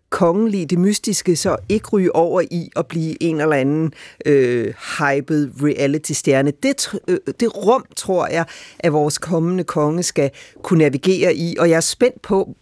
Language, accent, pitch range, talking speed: Danish, native, 155-205 Hz, 155 wpm